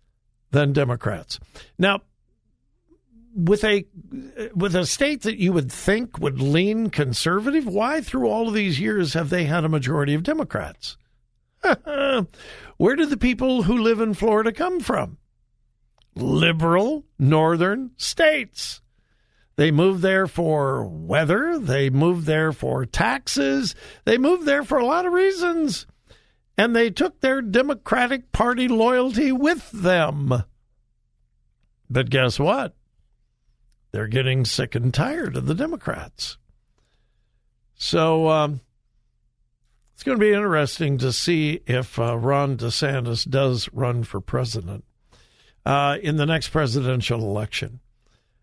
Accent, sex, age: American, male, 60-79